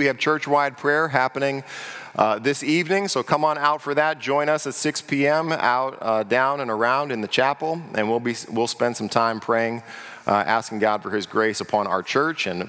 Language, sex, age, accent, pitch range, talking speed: English, male, 40-59, American, 110-135 Hz, 215 wpm